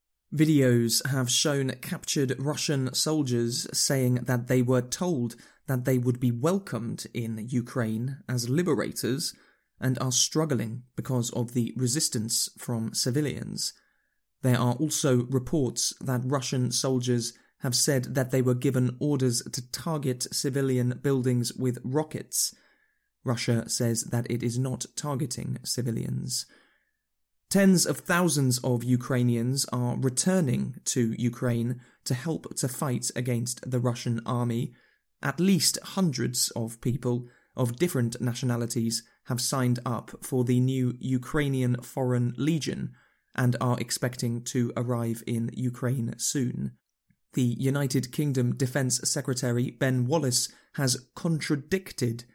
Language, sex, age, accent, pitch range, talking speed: English, male, 20-39, British, 120-140 Hz, 125 wpm